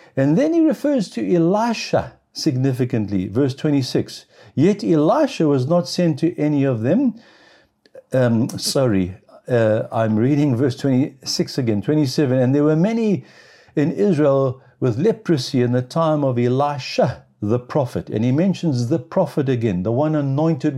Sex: male